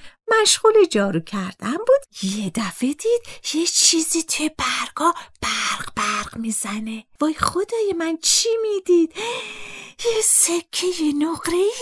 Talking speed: 115 wpm